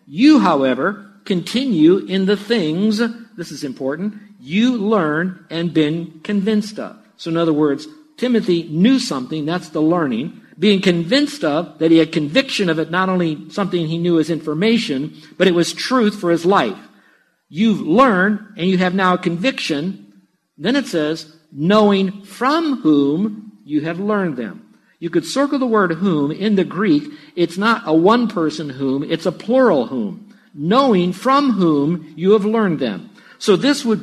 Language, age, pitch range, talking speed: English, 50-69, 165-225 Hz, 170 wpm